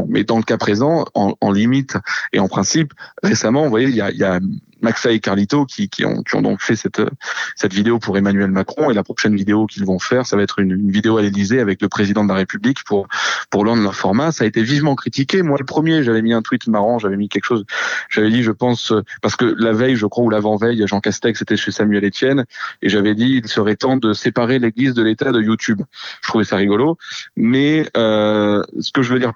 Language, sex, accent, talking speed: French, male, French, 245 wpm